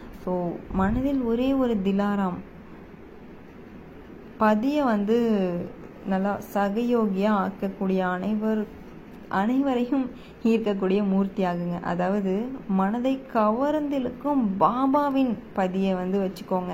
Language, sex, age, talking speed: Tamil, female, 20-39, 75 wpm